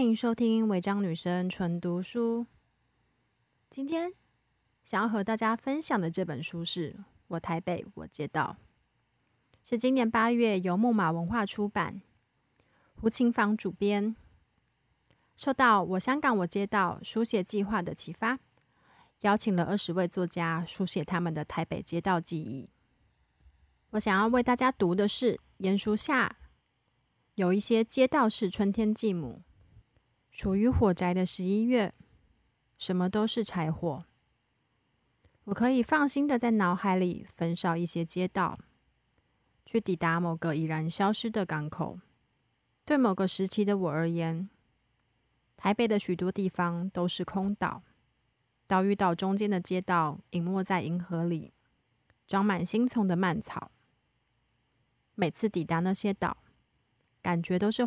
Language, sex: Chinese, female